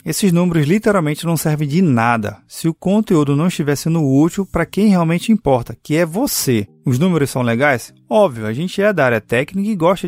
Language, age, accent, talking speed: Portuguese, 20-39, Brazilian, 200 wpm